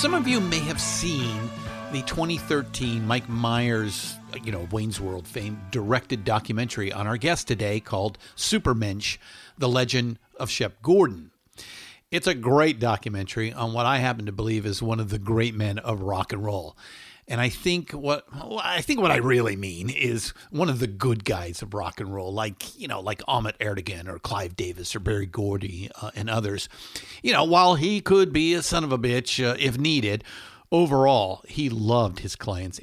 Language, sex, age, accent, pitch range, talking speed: English, male, 50-69, American, 105-130 Hz, 185 wpm